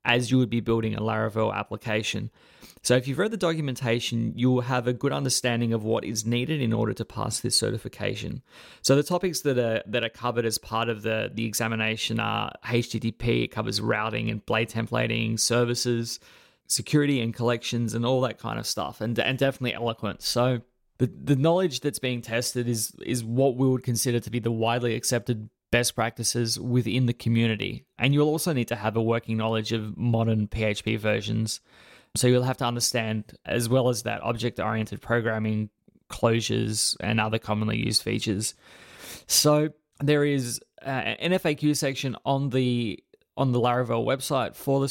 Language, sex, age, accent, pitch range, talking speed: English, male, 20-39, Australian, 115-130 Hz, 180 wpm